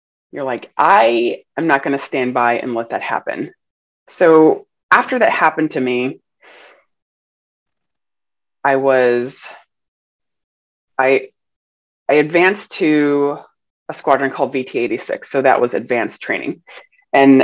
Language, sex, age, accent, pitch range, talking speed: English, female, 30-49, American, 135-195 Hz, 125 wpm